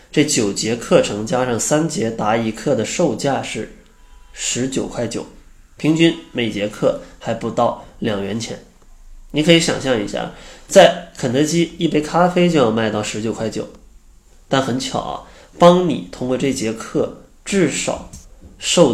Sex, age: male, 20-39